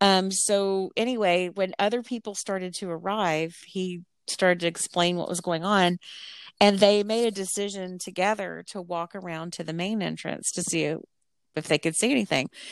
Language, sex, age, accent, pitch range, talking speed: English, female, 40-59, American, 170-205 Hz, 175 wpm